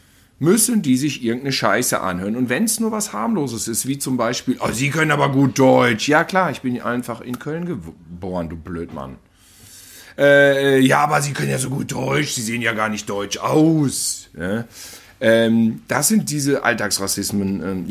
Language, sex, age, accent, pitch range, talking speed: German, male, 40-59, German, 105-140 Hz, 185 wpm